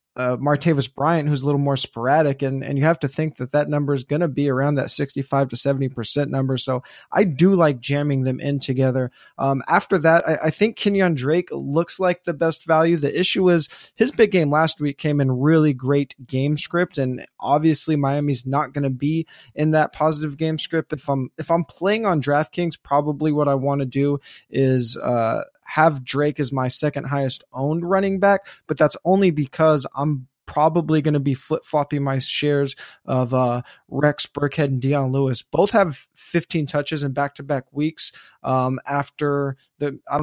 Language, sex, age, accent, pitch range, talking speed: English, male, 20-39, American, 135-155 Hz, 190 wpm